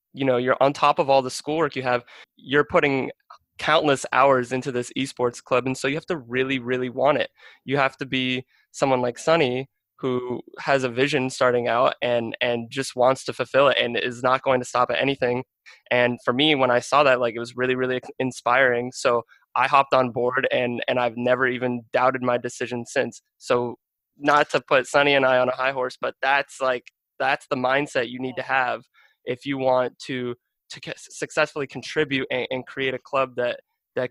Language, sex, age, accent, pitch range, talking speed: English, male, 20-39, American, 125-135 Hz, 210 wpm